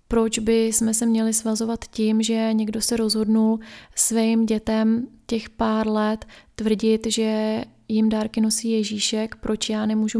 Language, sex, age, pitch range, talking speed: Czech, female, 20-39, 220-230 Hz, 145 wpm